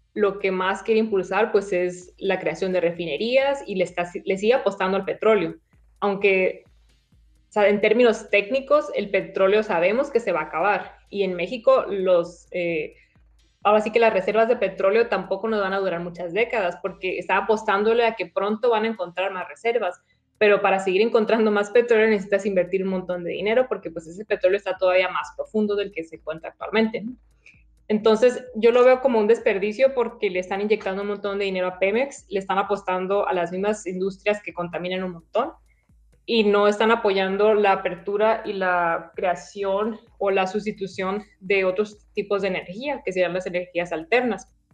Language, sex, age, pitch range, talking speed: Spanish, female, 20-39, 185-225 Hz, 185 wpm